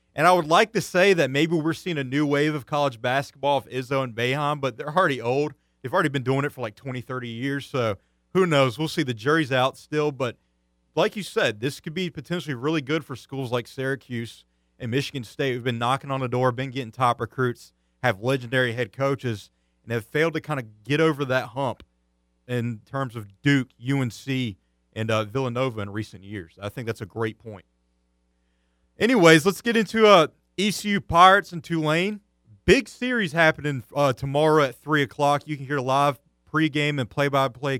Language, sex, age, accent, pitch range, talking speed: English, male, 30-49, American, 120-155 Hz, 200 wpm